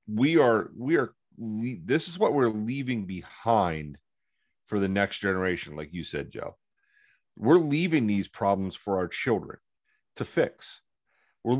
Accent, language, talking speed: American, English, 145 wpm